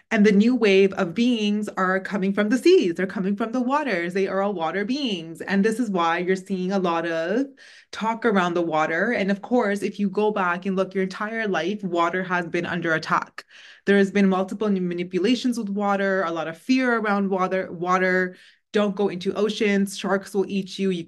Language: English